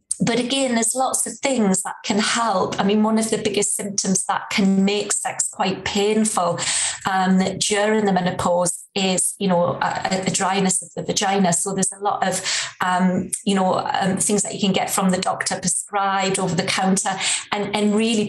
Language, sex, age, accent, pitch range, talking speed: English, female, 20-39, British, 175-200 Hz, 190 wpm